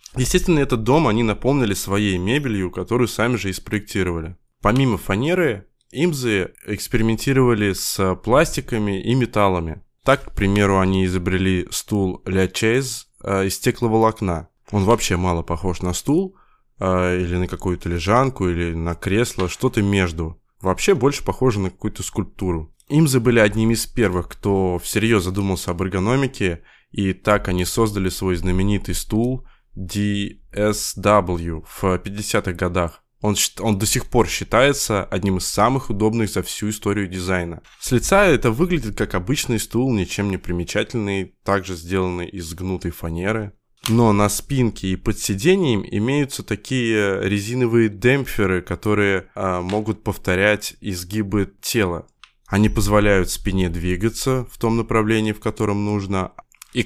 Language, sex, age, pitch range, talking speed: Russian, male, 20-39, 95-115 Hz, 135 wpm